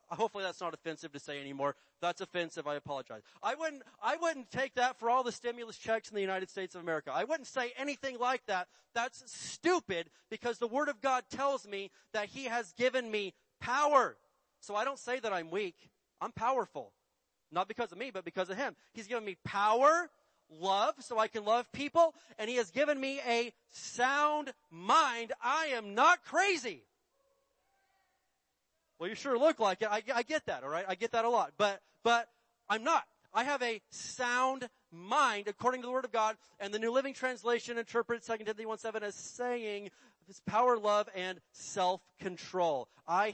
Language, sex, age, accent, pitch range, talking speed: English, male, 40-59, American, 185-255 Hz, 190 wpm